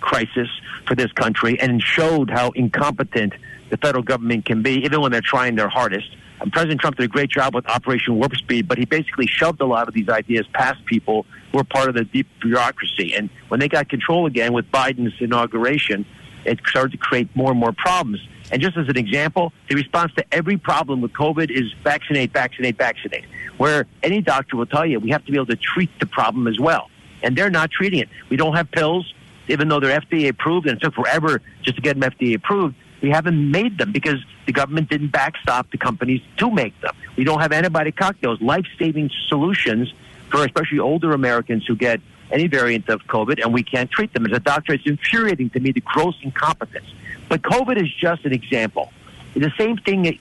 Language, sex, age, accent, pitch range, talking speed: English, male, 50-69, American, 120-155 Hz, 210 wpm